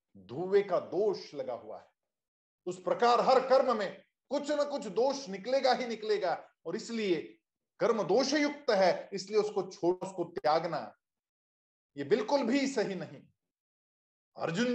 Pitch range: 185-260 Hz